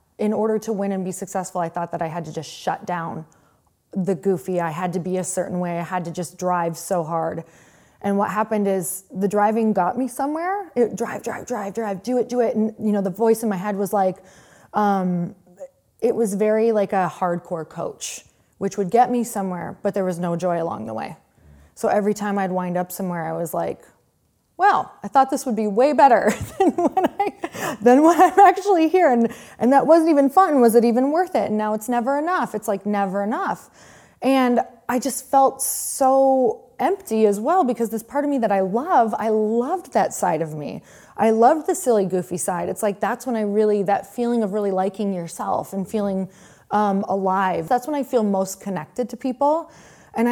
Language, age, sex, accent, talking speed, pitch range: English, 20-39, female, American, 215 wpm, 185-240 Hz